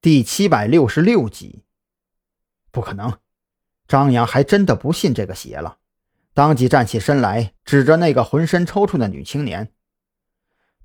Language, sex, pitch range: Chinese, male, 115-160 Hz